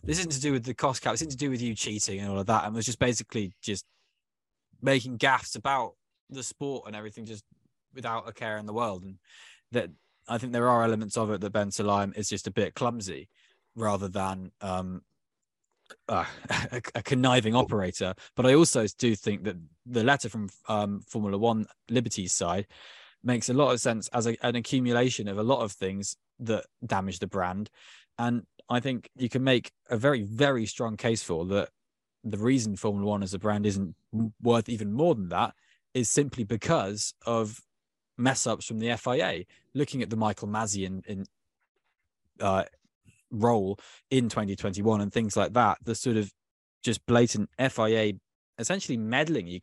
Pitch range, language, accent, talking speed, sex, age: 105-125 Hz, English, British, 185 wpm, male, 20-39